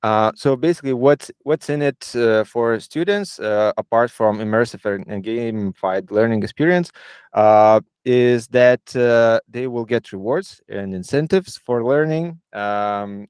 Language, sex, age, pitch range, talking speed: English, male, 20-39, 105-125 Hz, 140 wpm